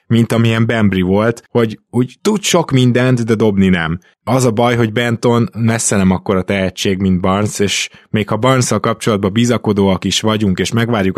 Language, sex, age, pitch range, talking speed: Hungarian, male, 20-39, 95-110 Hz, 175 wpm